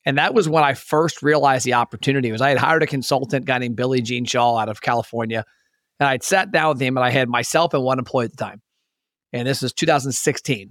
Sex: male